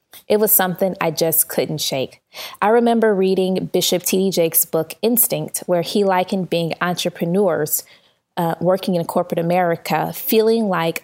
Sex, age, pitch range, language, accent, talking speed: female, 20-39, 160-195 Hz, English, American, 145 wpm